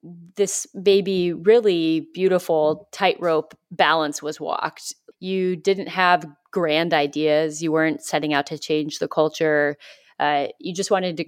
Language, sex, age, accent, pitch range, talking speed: English, female, 30-49, American, 150-185 Hz, 140 wpm